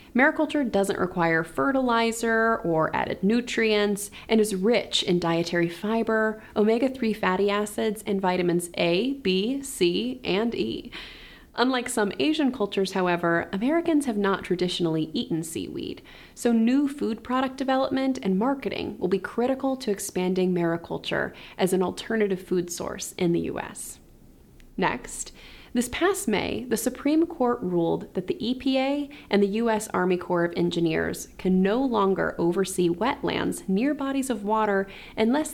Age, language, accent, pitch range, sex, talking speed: 30-49, English, American, 185-245 Hz, female, 140 wpm